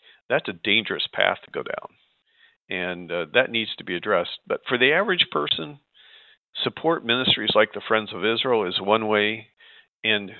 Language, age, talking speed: English, 50-69, 175 wpm